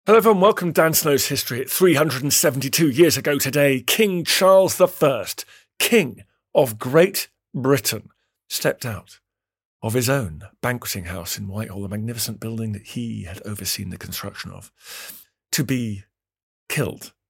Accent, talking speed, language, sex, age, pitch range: British, 140 wpm, English, male, 50-69, 105-165 Hz